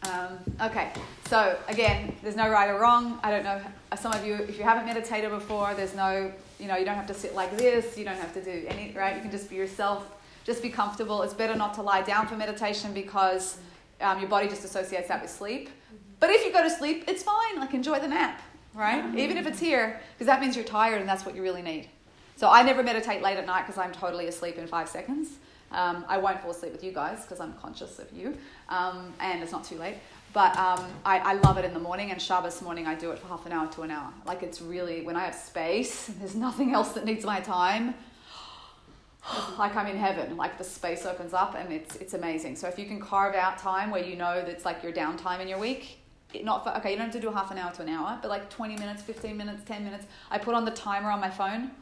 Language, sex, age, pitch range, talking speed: English, female, 30-49, 185-225 Hz, 255 wpm